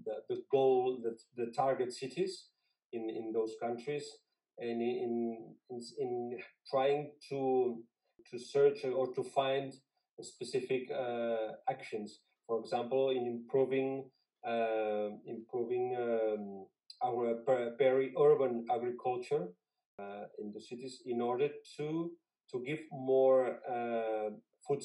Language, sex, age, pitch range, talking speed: English, male, 40-59, 115-150 Hz, 115 wpm